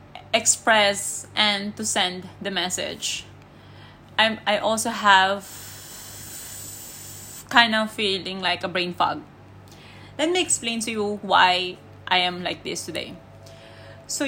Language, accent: English, Filipino